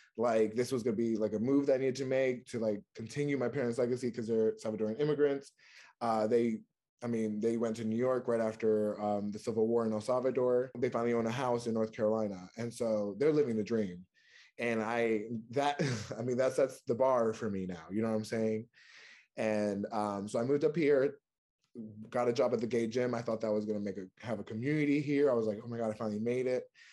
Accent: American